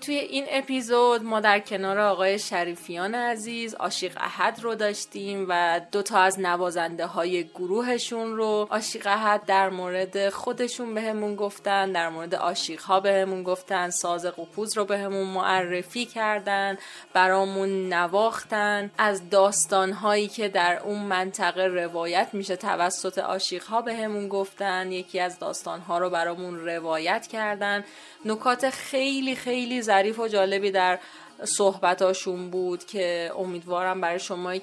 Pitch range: 180-215 Hz